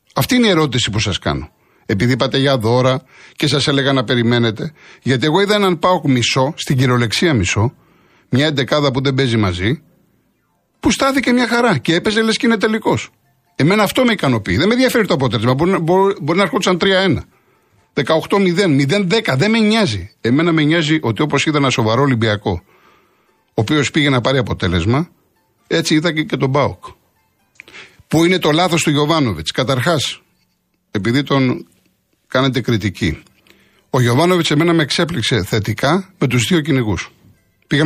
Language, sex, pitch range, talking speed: Greek, male, 115-170 Hz, 160 wpm